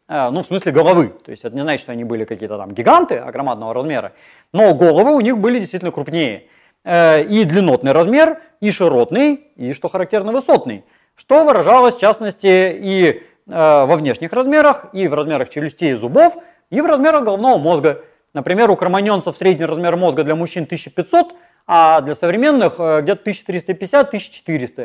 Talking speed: 155 wpm